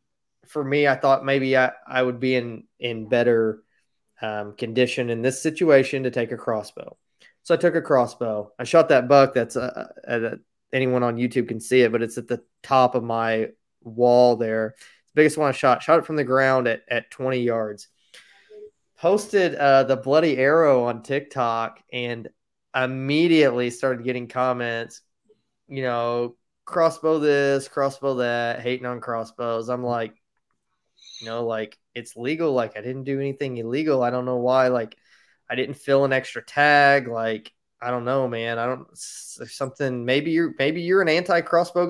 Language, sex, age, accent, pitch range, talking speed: English, male, 20-39, American, 120-145 Hz, 175 wpm